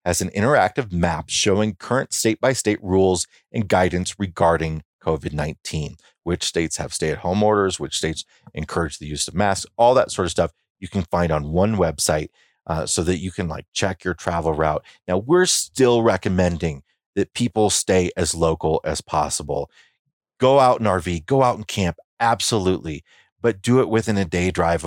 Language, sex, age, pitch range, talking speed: English, male, 30-49, 85-105 Hz, 175 wpm